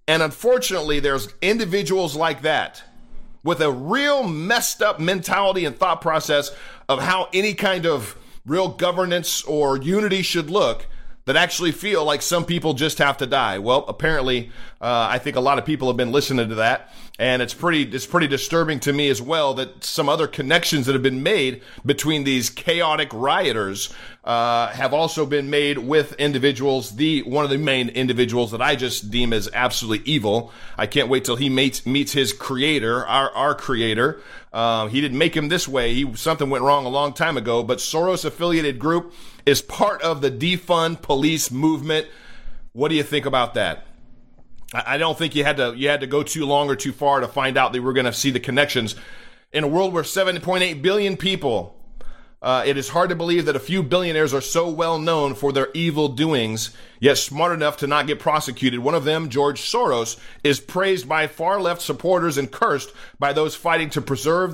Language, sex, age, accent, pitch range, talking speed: English, male, 40-59, American, 135-165 Hz, 195 wpm